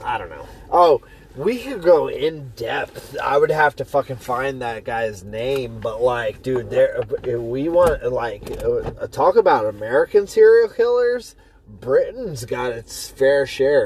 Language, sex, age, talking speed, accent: English, male, 20-39, 150 wpm, American